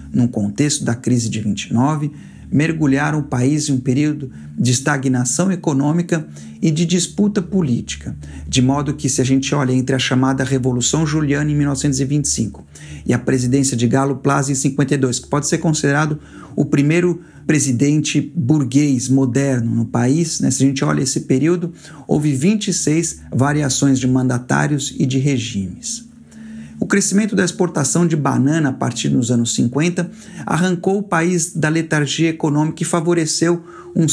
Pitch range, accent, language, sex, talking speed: 130-165 Hz, Brazilian, Portuguese, male, 155 wpm